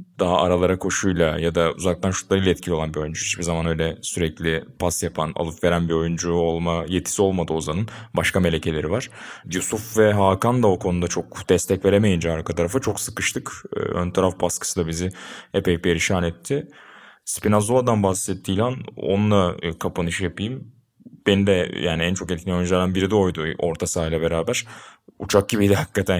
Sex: male